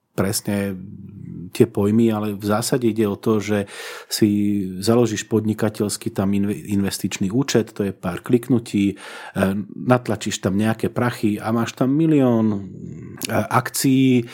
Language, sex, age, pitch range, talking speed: Slovak, male, 40-59, 95-115 Hz, 120 wpm